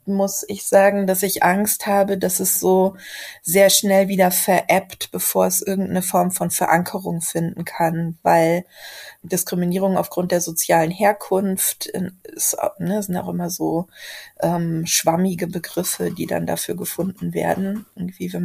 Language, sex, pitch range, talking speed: German, female, 170-195 Hz, 145 wpm